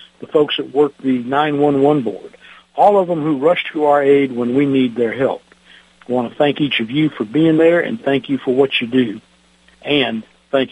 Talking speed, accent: 220 wpm, American